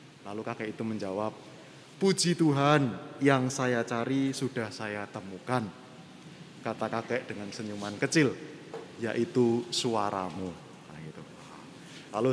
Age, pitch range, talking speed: 20-39, 120-165 Hz, 105 wpm